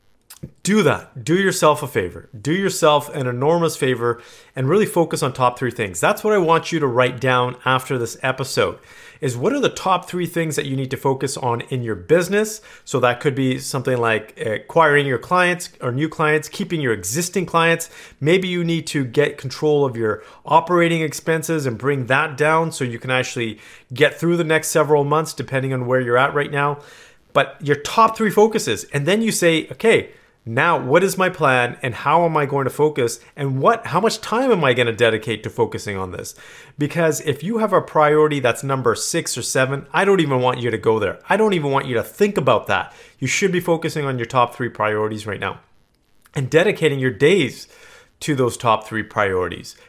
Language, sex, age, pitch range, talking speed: English, male, 30-49, 125-165 Hz, 210 wpm